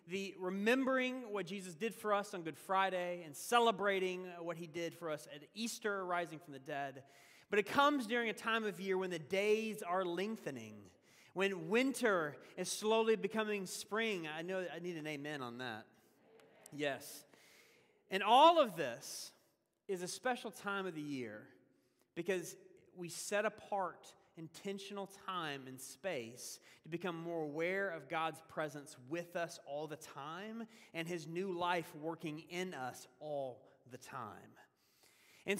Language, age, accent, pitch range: English, 30-49, American, 160-215 Hz